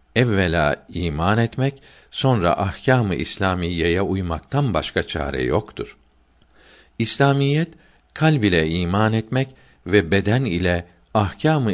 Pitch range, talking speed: 80-110 Hz, 95 wpm